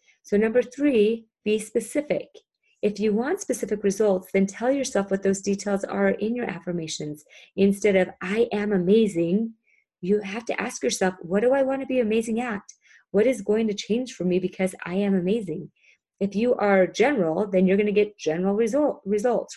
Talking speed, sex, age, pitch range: 185 wpm, female, 30-49, 180-225 Hz